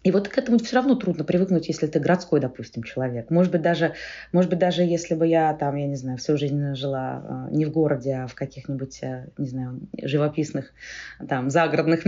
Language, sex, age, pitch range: Russian, female, 20-39, 145-190 Hz